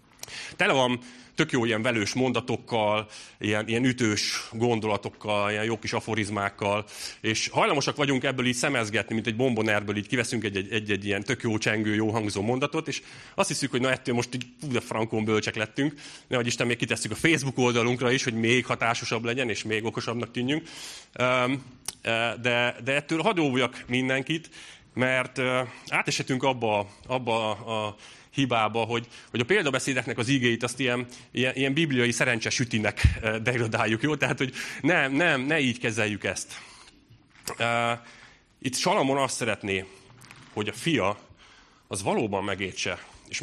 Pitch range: 110-130 Hz